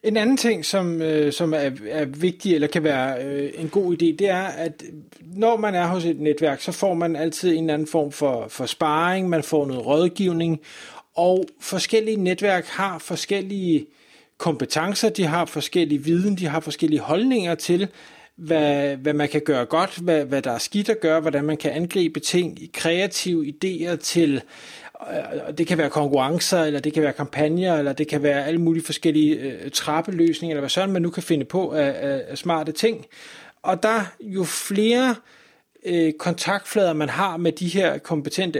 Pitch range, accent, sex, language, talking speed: 155-190 Hz, native, male, Danish, 175 wpm